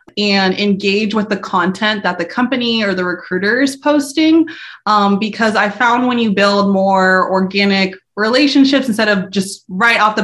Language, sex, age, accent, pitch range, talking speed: English, female, 20-39, American, 185-230 Hz, 170 wpm